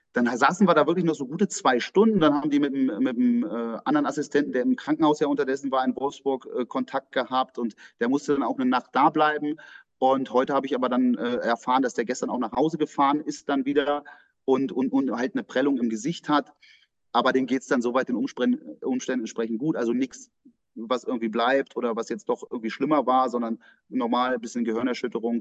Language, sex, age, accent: German, male, 30-49, German